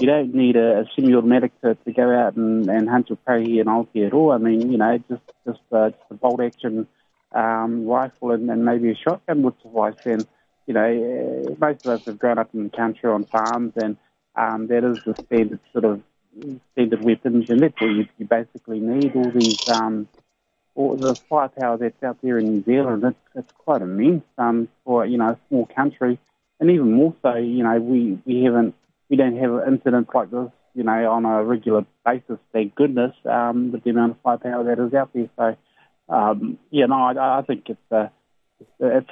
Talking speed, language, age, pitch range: 210 wpm, English, 30-49, 115-125 Hz